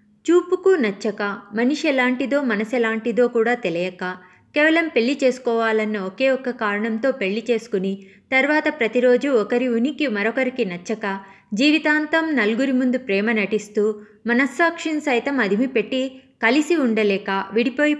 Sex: female